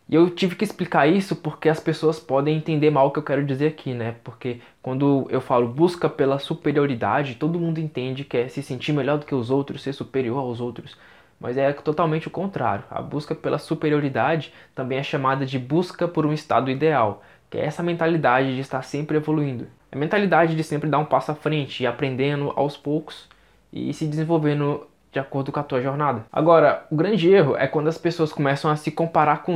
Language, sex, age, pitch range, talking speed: Portuguese, male, 20-39, 135-160 Hz, 205 wpm